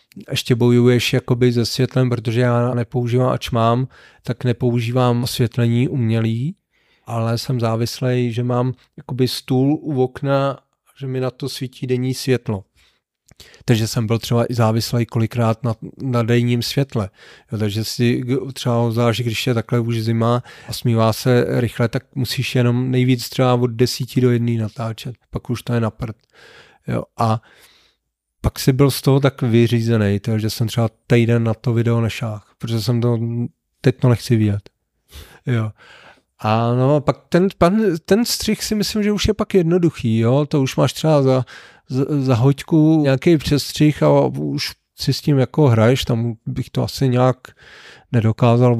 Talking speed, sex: 160 wpm, male